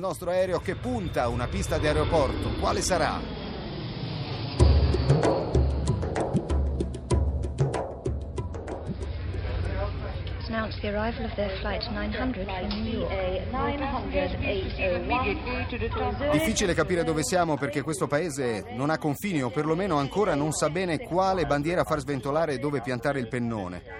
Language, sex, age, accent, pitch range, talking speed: Italian, male, 40-59, native, 120-180 Hz, 90 wpm